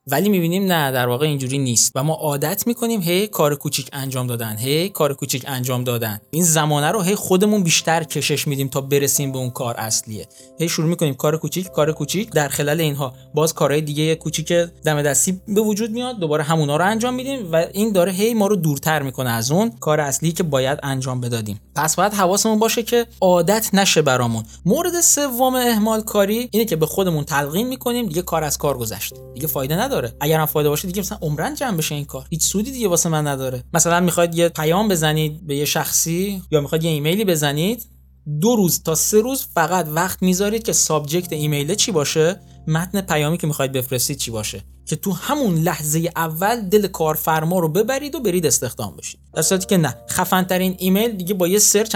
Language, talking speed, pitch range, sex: Persian, 200 wpm, 145-200 Hz, male